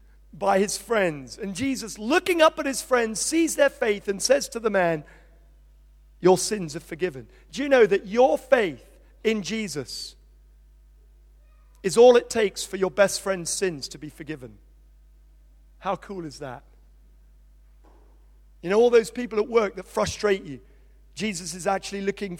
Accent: British